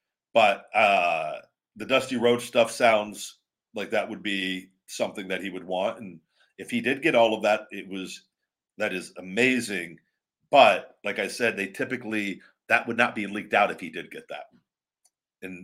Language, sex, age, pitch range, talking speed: English, male, 40-59, 105-125 Hz, 180 wpm